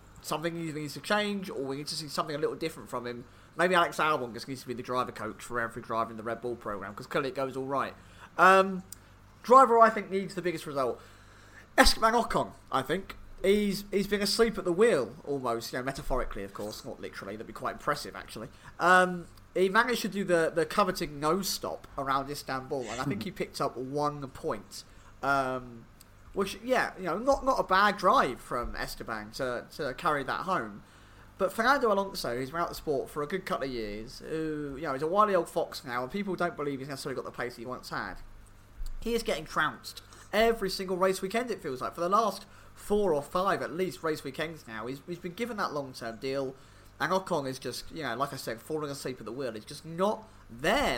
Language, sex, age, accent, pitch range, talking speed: English, male, 30-49, British, 120-185 Hz, 225 wpm